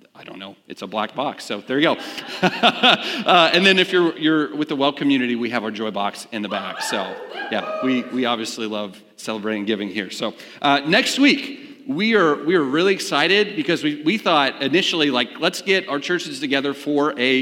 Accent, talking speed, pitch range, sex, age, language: American, 210 wpm, 140-205 Hz, male, 40-59, English